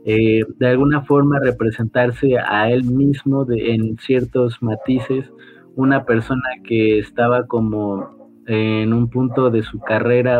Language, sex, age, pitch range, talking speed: Spanish, male, 30-49, 110-130 Hz, 135 wpm